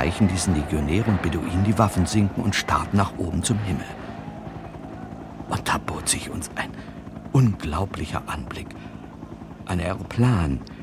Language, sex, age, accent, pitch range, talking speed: German, male, 50-69, German, 85-115 Hz, 125 wpm